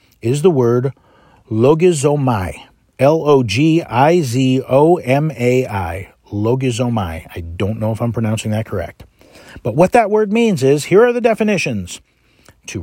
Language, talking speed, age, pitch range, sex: English, 155 wpm, 50-69, 120-160 Hz, male